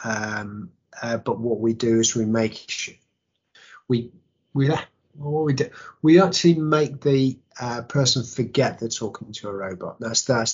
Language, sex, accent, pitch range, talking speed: English, male, British, 110-130 Hz, 160 wpm